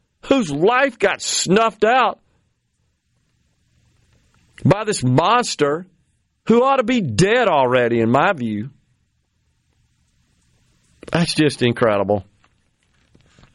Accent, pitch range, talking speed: American, 120-190 Hz, 90 wpm